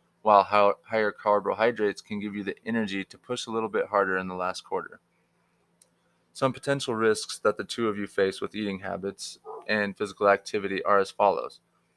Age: 20-39